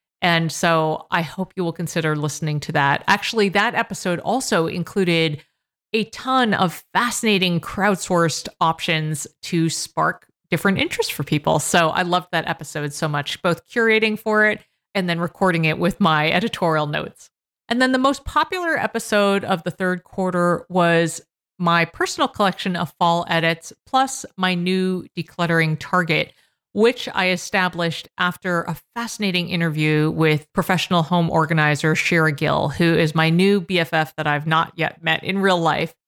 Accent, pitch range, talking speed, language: American, 160-195 Hz, 155 wpm, English